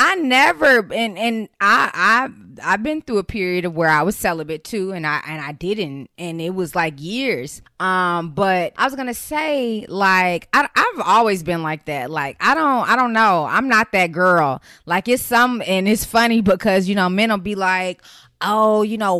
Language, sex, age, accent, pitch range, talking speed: English, female, 20-39, American, 180-250 Hz, 205 wpm